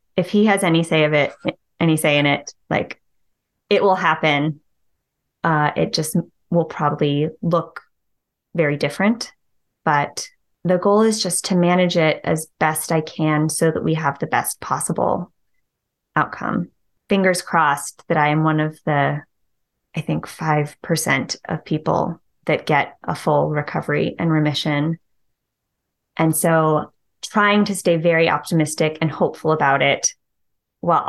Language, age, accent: English, 20-39, American